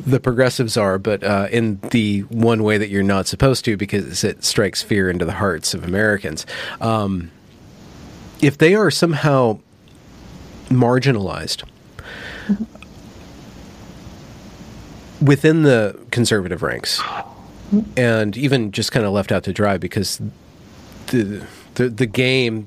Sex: male